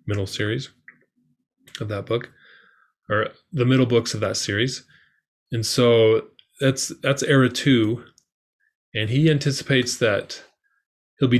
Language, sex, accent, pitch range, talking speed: English, male, American, 100-125 Hz, 125 wpm